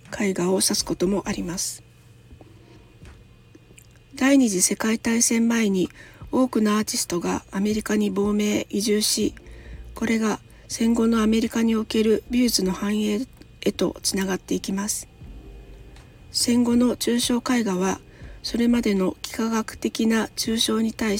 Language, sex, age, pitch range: Japanese, female, 40-59, 190-230 Hz